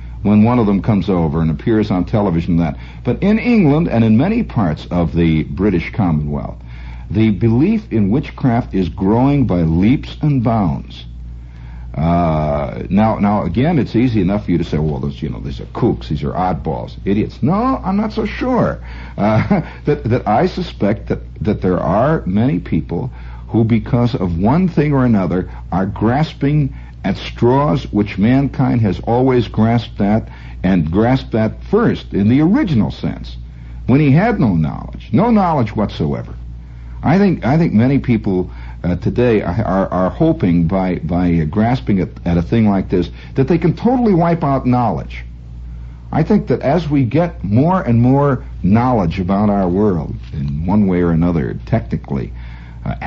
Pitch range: 75-130 Hz